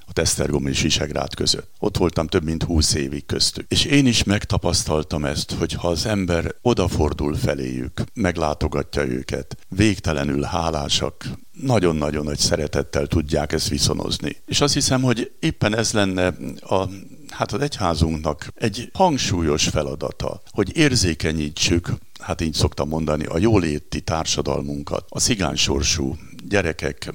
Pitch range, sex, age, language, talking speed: 75-95 Hz, male, 60-79, Hungarian, 130 wpm